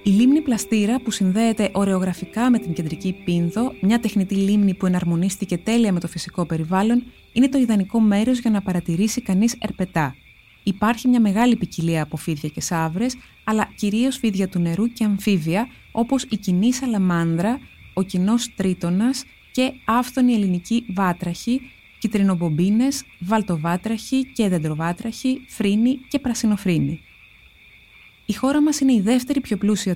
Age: 20-39